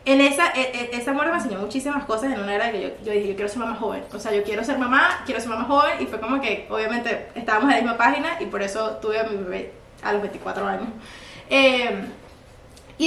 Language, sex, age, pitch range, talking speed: Spanish, female, 20-39, 210-275 Hz, 240 wpm